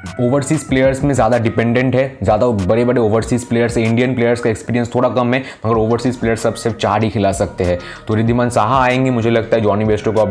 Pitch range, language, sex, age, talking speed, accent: 105-120 Hz, Hindi, male, 20-39, 225 wpm, native